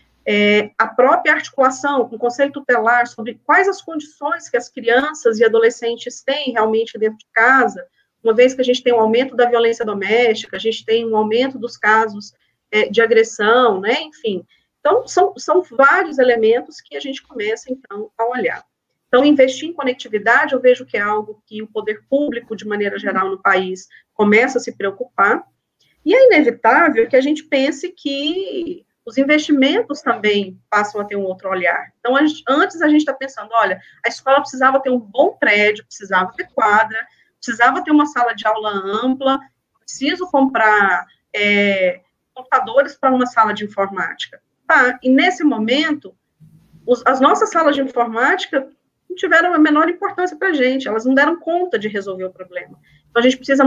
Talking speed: 175 wpm